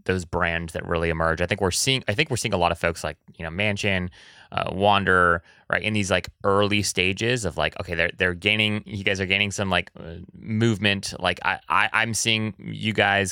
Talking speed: 220 wpm